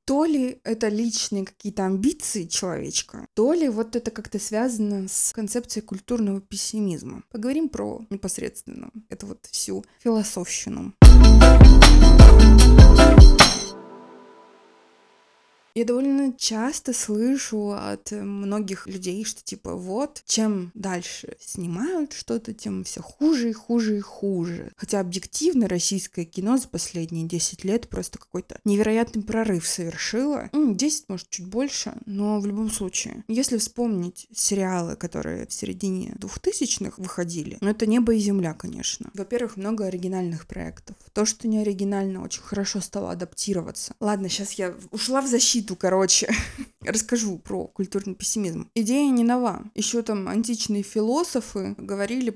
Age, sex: 20-39, female